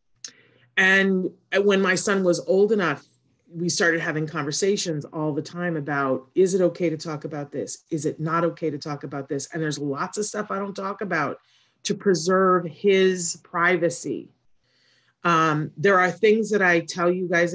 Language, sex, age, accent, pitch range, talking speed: English, female, 40-59, American, 150-195 Hz, 180 wpm